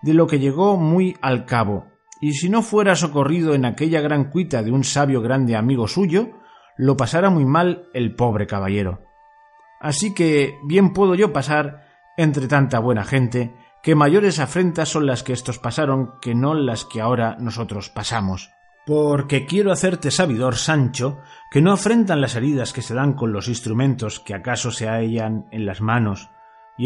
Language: Spanish